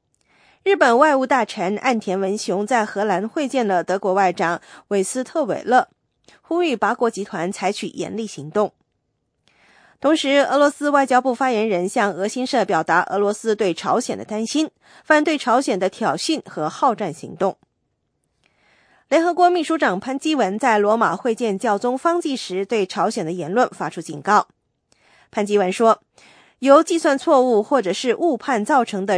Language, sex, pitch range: English, female, 195-275 Hz